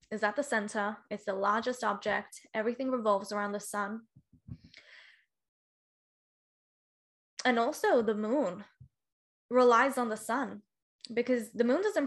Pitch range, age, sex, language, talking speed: 215-260 Hz, 10-29, female, English, 125 wpm